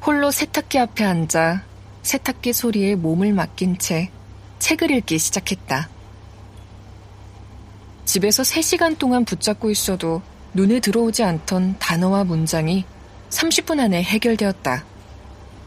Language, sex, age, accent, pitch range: Korean, female, 20-39, native, 160-225 Hz